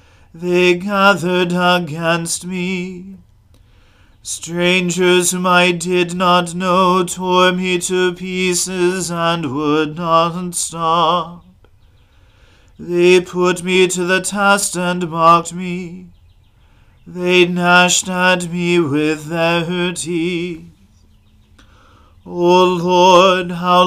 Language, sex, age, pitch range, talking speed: English, male, 40-59, 155-180 Hz, 95 wpm